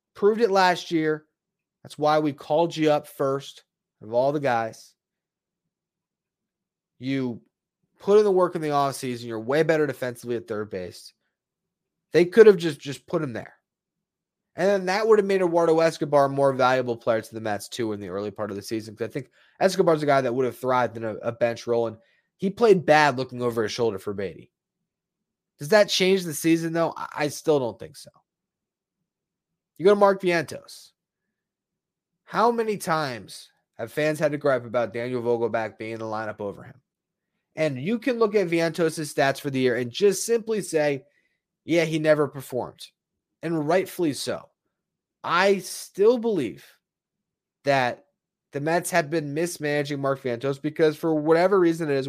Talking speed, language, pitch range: 180 wpm, English, 125-185 Hz